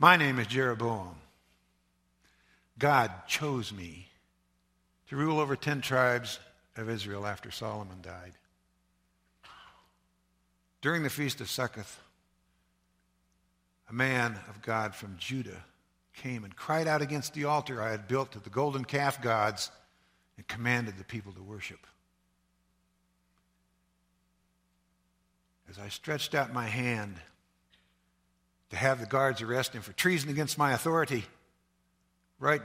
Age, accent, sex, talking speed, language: 60-79, American, male, 125 wpm, English